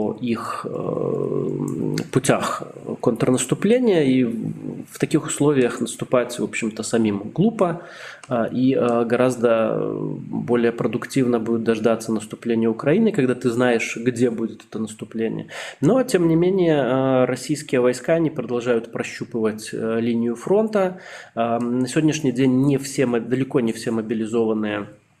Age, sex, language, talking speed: 20-39, male, Russian, 110 wpm